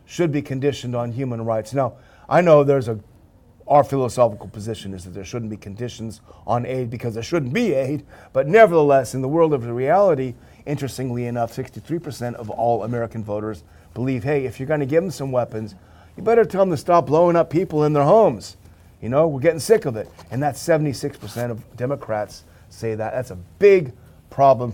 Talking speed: 195 wpm